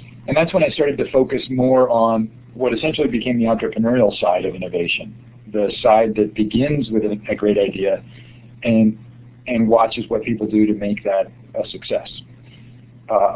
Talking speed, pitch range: 165 wpm, 110-125 Hz